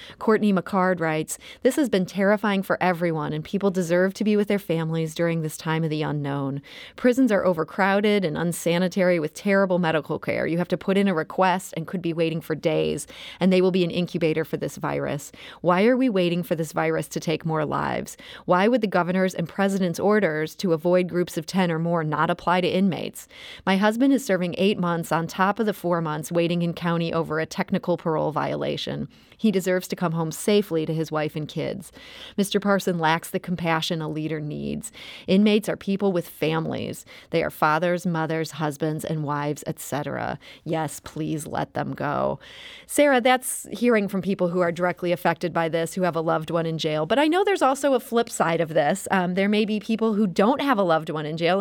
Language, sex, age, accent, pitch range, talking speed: English, female, 30-49, American, 160-205 Hz, 210 wpm